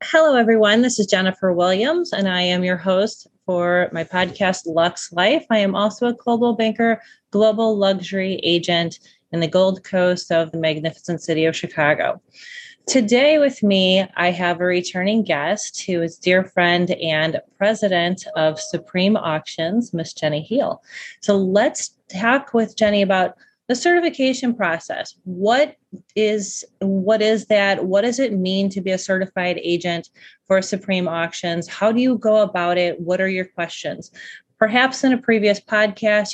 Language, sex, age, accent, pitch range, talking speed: English, female, 30-49, American, 180-220 Hz, 160 wpm